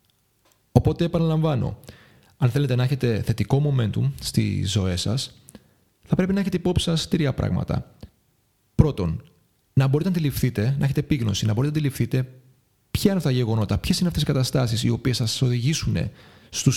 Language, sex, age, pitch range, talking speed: Greek, male, 30-49, 115-145 Hz, 170 wpm